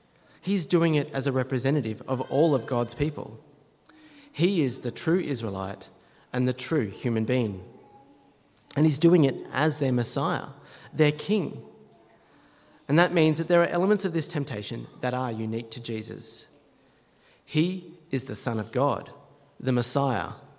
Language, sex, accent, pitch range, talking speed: English, male, Australian, 115-160 Hz, 155 wpm